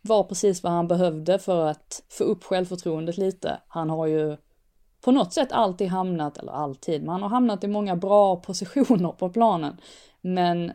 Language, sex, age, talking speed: Swedish, female, 20-39, 180 wpm